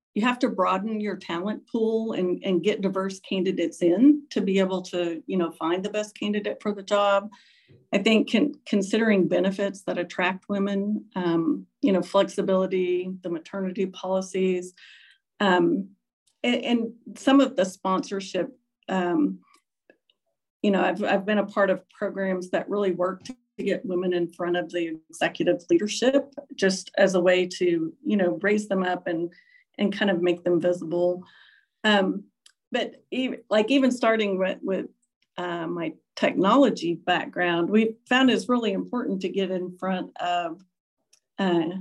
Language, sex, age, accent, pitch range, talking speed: English, female, 40-59, American, 180-225 Hz, 155 wpm